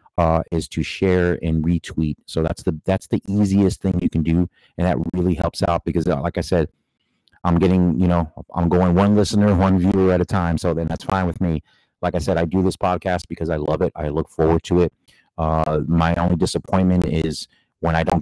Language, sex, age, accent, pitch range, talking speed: English, male, 30-49, American, 80-90 Hz, 225 wpm